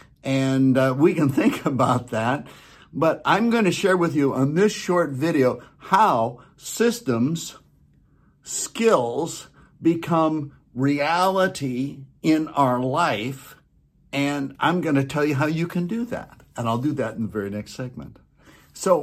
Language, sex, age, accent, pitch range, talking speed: English, male, 60-79, American, 120-150 Hz, 150 wpm